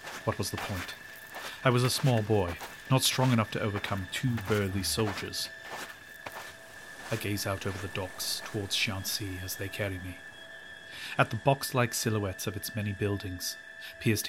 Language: English